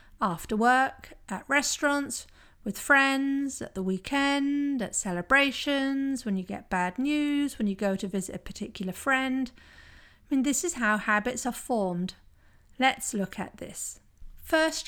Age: 40-59